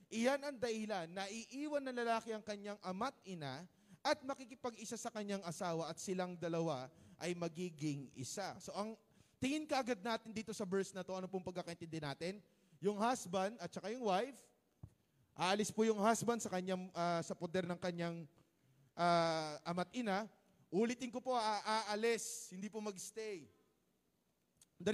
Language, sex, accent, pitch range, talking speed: Filipino, male, native, 175-230 Hz, 160 wpm